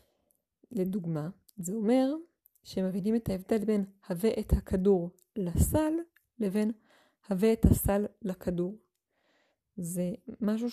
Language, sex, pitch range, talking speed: Hebrew, female, 190-250 Hz, 105 wpm